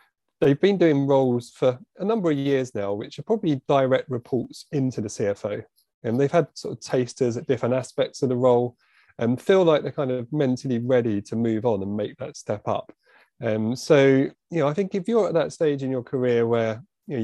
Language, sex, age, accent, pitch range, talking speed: English, male, 30-49, British, 115-140 Hz, 215 wpm